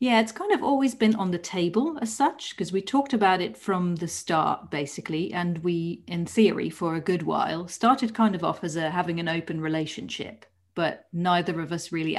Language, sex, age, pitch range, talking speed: English, female, 40-59, 165-220 Hz, 210 wpm